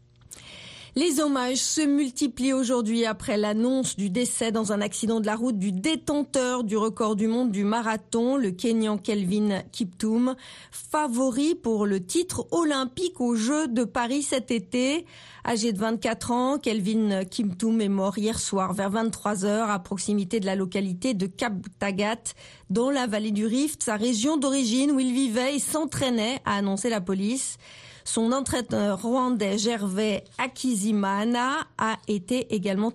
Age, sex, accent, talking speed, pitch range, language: 40-59, female, French, 150 wpm, 215-275 Hz, French